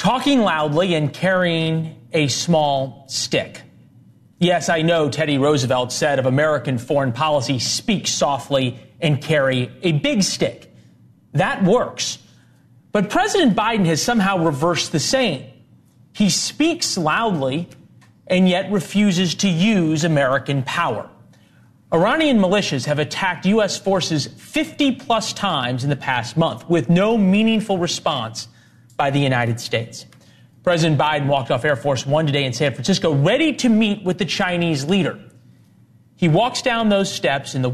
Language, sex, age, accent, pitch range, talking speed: English, male, 30-49, American, 140-195 Hz, 145 wpm